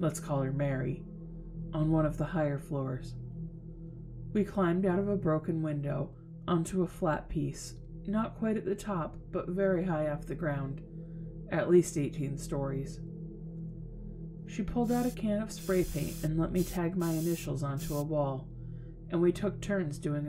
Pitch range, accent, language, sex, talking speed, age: 145-170 Hz, American, English, female, 170 wpm, 30-49